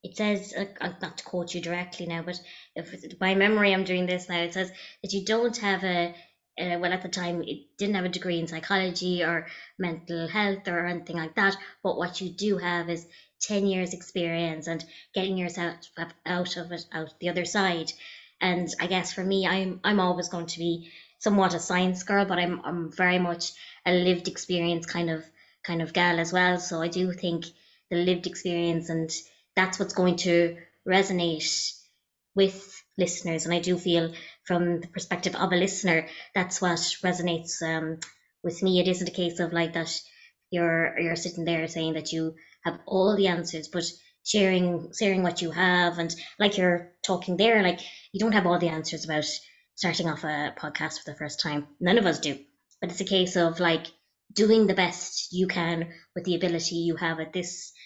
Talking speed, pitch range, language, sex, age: 195 wpm, 170-185 Hz, English, female, 20-39